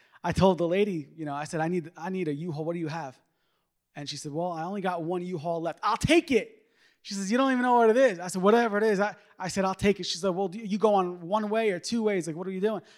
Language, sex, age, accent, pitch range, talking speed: English, male, 20-39, American, 155-210 Hz, 315 wpm